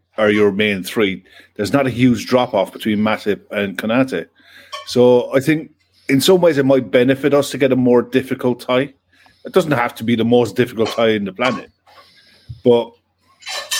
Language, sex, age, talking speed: English, male, 50-69, 185 wpm